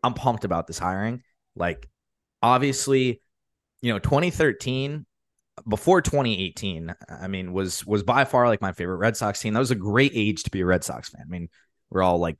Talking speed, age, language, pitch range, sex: 195 wpm, 20-39, English, 95-120 Hz, male